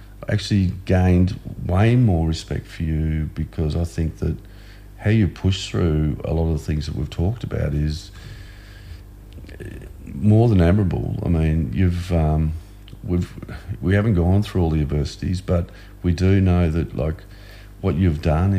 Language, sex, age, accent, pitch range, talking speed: English, male, 50-69, Australian, 80-100 Hz, 160 wpm